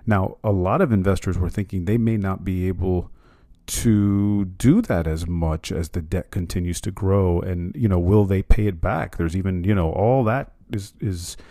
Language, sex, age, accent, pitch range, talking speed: English, male, 40-59, American, 90-130 Hz, 205 wpm